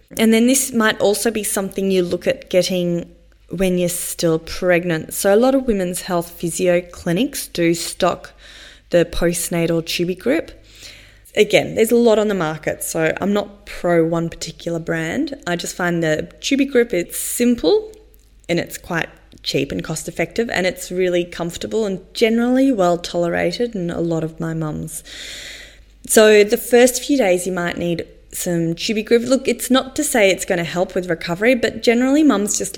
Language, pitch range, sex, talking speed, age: English, 170-225 Hz, female, 175 wpm, 20-39